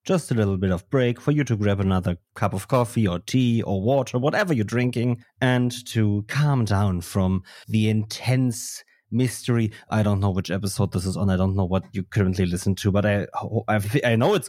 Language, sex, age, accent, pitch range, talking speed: English, male, 30-49, German, 100-125 Hz, 205 wpm